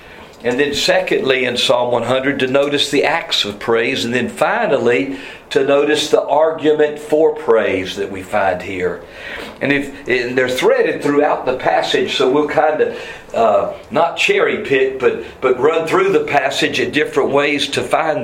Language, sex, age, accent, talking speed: English, male, 50-69, American, 160 wpm